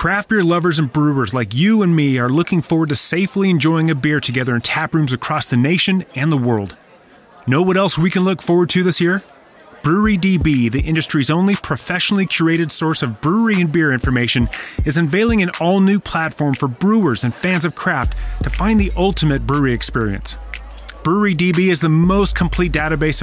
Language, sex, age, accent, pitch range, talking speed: English, male, 30-49, American, 140-180 Hz, 190 wpm